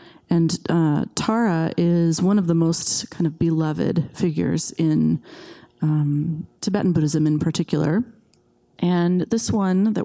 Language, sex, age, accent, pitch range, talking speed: English, female, 30-49, American, 165-205 Hz, 130 wpm